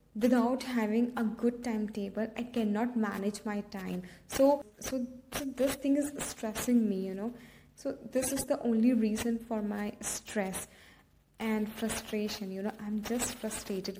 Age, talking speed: 20-39, 150 wpm